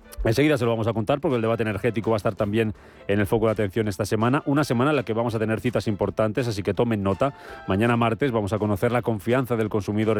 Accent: Spanish